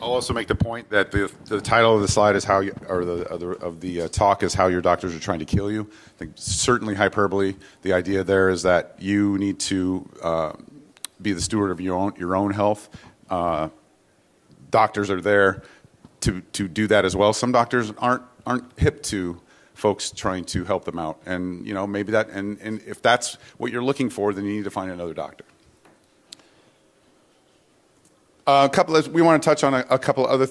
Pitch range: 95-120 Hz